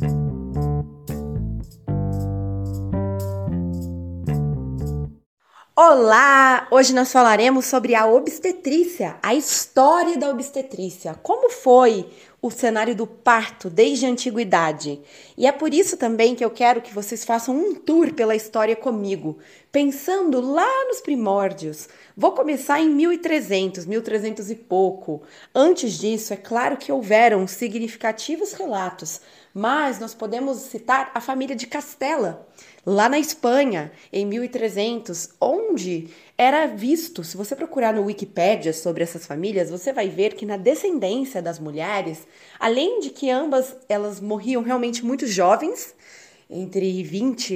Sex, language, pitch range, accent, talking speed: female, Portuguese, 185-265 Hz, Brazilian, 125 wpm